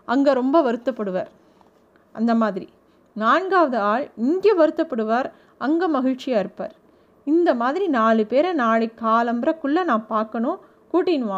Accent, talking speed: native, 110 wpm